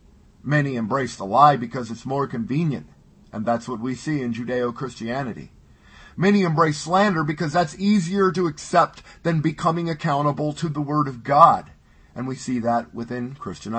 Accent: American